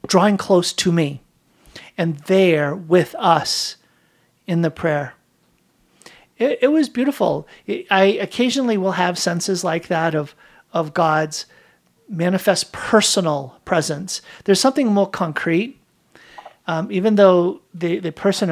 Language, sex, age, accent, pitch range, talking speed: English, male, 50-69, American, 160-200 Hz, 125 wpm